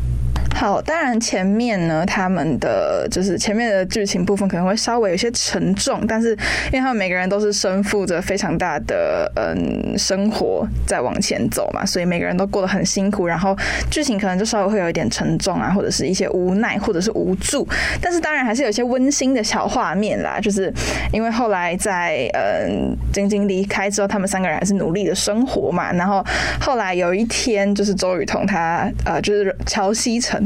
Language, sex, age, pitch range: Chinese, female, 10-29, 190-220 Hz